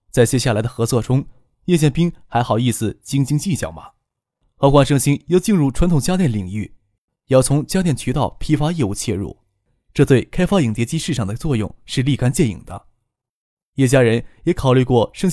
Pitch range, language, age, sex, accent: 110-155 Hz, Chinese, 20-39, male, native